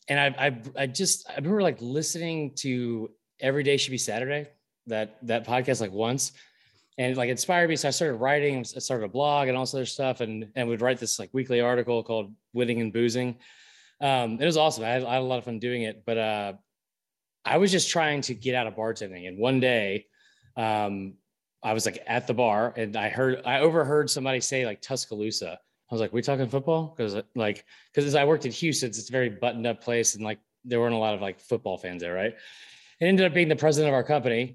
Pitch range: 115-140 Hz